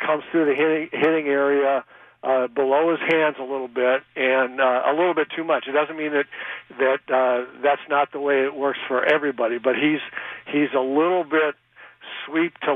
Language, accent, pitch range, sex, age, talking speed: English, American, 135-155 Hz, male, 60-79, 200 wpm